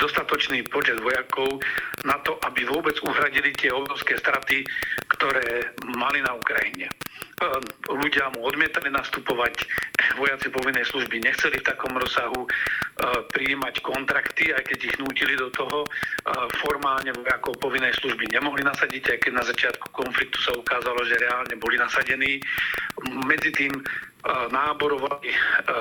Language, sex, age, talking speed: Slovak, male, 50-69, 125 wpm